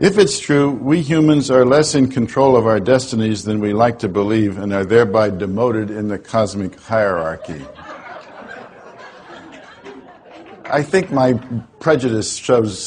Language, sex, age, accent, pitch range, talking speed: English, male, 60-79, American, 110-140 Hz, 140 wpm